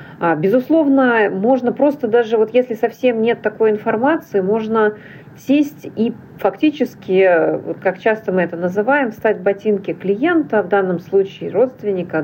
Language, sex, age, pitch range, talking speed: Russian, female, 40-59, 170-225 Hz, 130 wpm